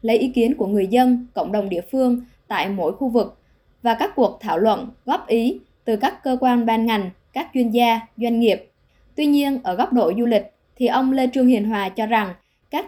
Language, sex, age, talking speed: Vietnamese, male, 20-39, 225 wpm